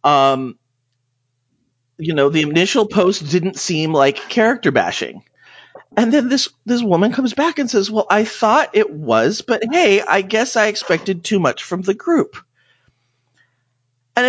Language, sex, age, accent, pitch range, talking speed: English, male, 40-59, American, 125-205 Hz, 155 wpm